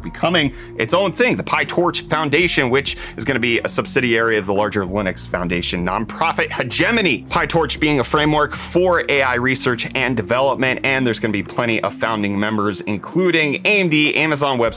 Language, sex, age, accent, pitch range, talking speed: English, male, 30-49, American, 105-145 Hz, 175 wpm